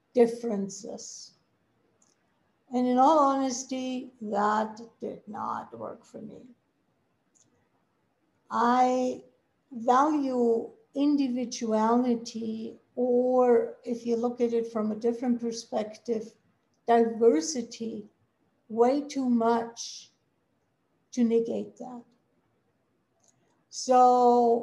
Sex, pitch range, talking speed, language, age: female, 230-255 Hz, 80 wpm, English, 60-79